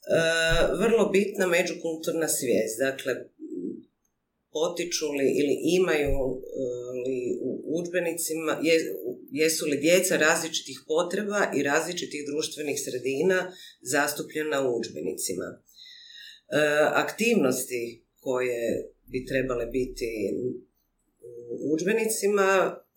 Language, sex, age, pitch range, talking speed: Croatian, female, 40-59, 135-215 Hz, 90 wpm